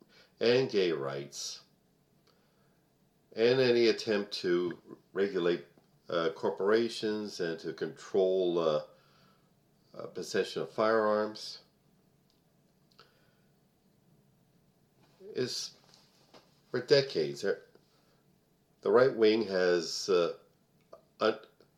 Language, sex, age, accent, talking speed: English, male, 50-69, American, 70 wpm